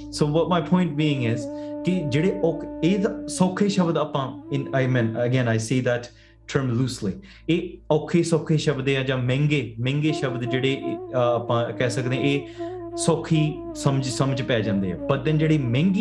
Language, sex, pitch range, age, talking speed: English, male, 120-150 Hz, 20-39, 65 wpm